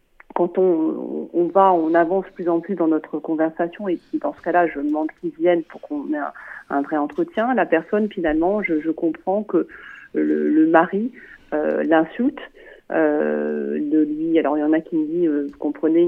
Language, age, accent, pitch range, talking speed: French, 40-59, French, 160-230 Hz, 200 wpm